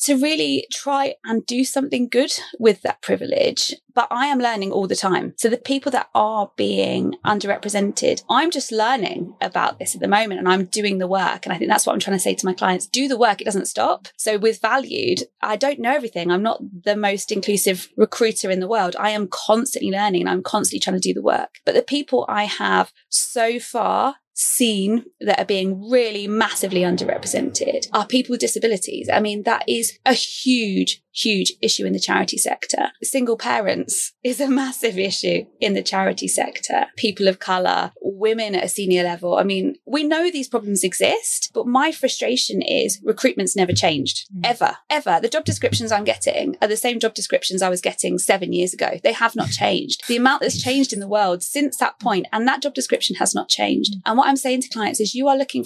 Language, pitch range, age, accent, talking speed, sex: English, 200-270 Hz, 20-39, British, 210 wpm, female